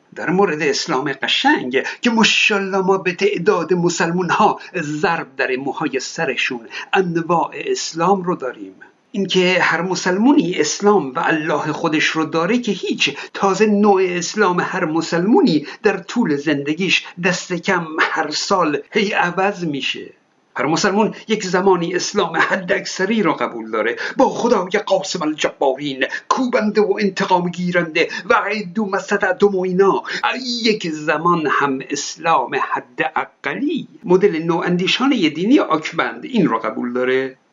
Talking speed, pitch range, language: 130 wpm, 170-205 Hz, Persian